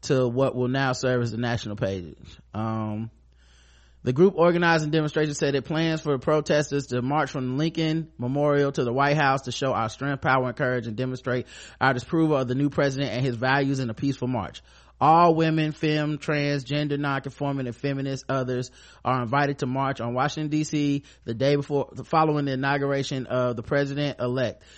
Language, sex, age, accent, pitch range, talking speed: English, male, 30-49, American, 125-145 Hz, 185 wpm